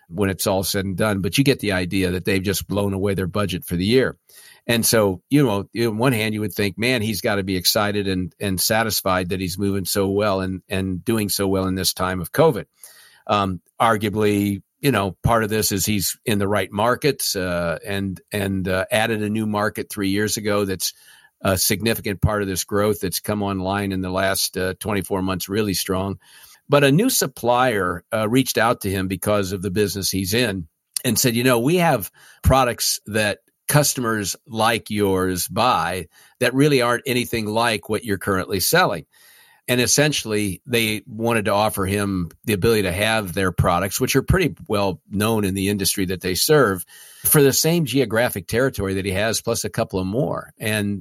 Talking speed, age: 200 wpm, 50-69